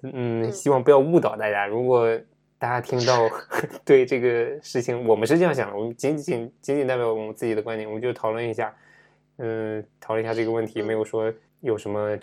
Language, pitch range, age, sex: Chinese, 115-140 Hz, 20-39, male